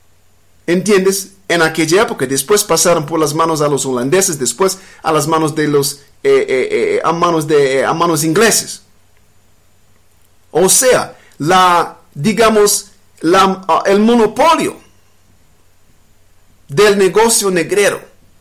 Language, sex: English, male